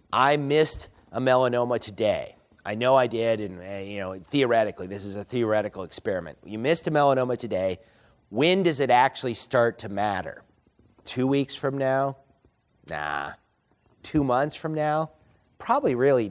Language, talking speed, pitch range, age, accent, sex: English, 150 wpm, 110-140 Hz, 30-49, American, male